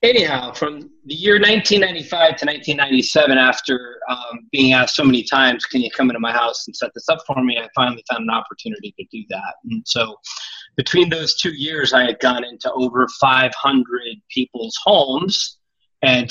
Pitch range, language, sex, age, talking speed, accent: 120-175 Hz, English, male, 30-49, 175 wpm, American